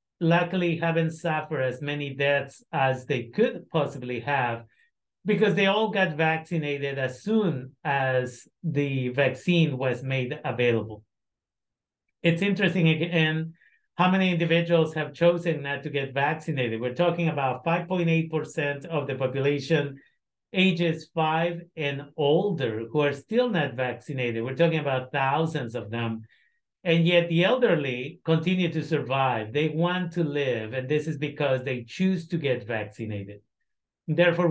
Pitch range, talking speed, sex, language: 135-170 Hz, 135 wpm, male, Spanish